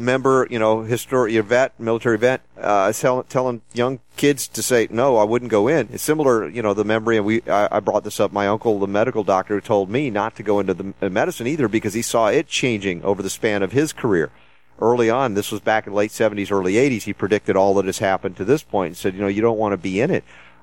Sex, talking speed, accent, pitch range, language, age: male, 255 wpm, American, 100-125 Hz, English, 40-59